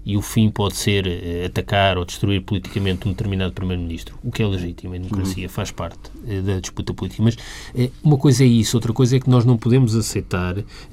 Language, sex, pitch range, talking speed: Portuguese, male, 100-135 Hz, 200 wpm